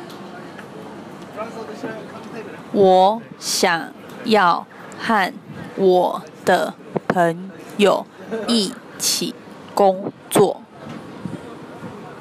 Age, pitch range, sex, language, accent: 20-39, 185-235 Hz, female, Chinese, native